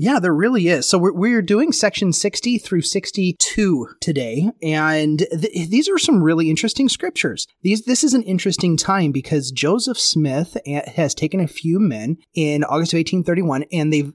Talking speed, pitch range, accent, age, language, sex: 165 wpm, 150-190 Hz, American, 30-49, English, male